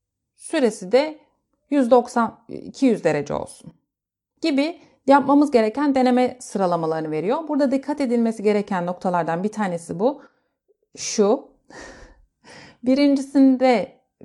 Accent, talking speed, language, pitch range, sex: native, 95 wpm, Turkish, 200-260 Hz, female